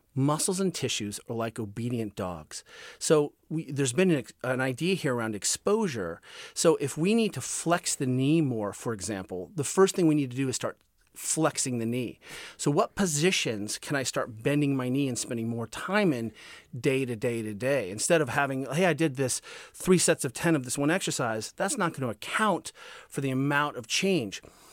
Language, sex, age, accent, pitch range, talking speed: English, male, 40-59, American, 125-170 Hz, 200 wpm